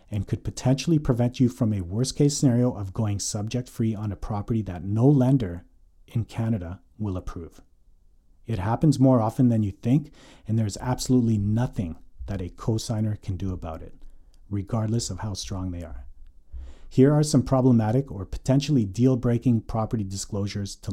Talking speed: 165 wpm